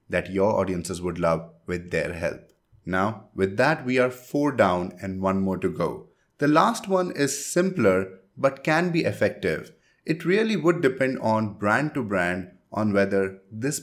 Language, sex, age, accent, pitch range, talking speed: English, male, 30-49, Indian, 95-125 Hz, 175 wpm